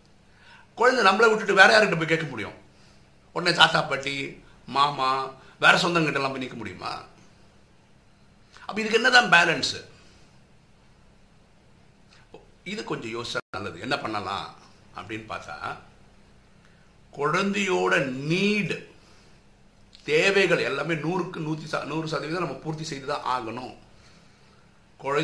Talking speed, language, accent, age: 60 wpm, Tamil, native, 60-79